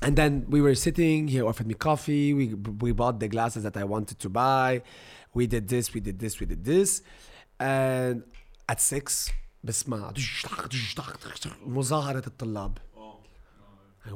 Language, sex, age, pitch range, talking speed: English, male, 30-49, 105-140 Hz, 135 wpm